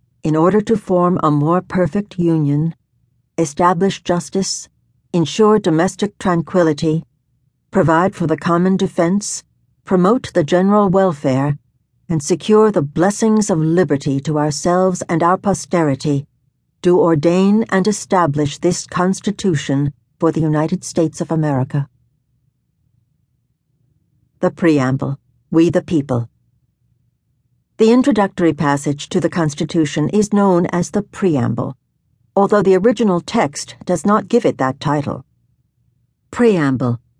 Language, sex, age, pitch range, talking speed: English, female, 60-79, 140-190 Hz, 115 wpm